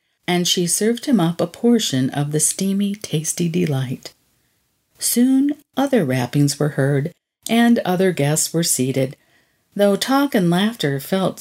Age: 50-69